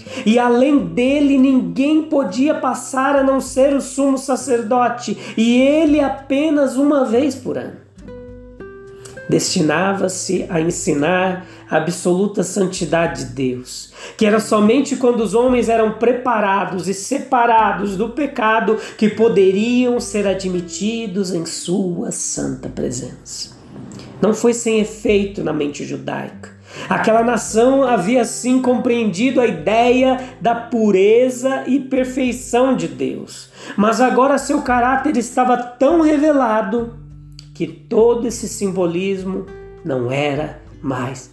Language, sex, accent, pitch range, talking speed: Portuguese, male, Brazilian, 195-260 Hz, 120 wpm